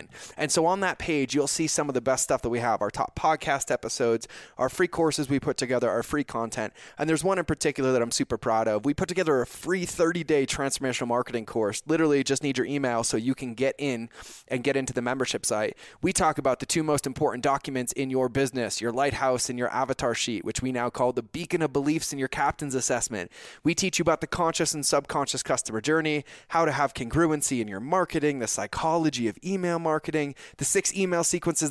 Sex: male